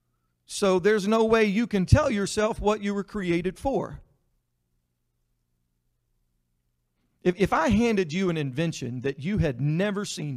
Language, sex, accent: English, male, American